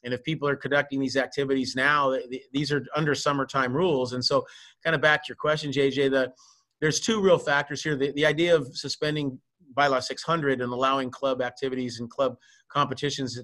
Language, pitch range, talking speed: English, 130-155 Hz, 185 wpm